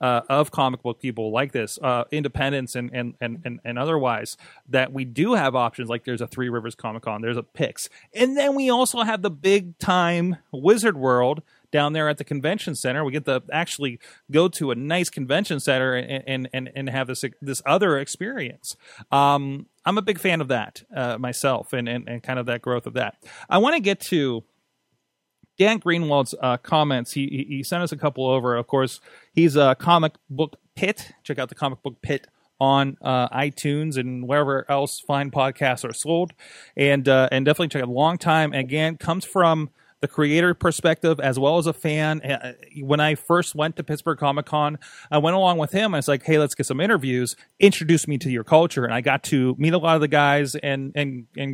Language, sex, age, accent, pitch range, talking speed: English, male, 30-49, American, 130-160 Hz, 210 wpm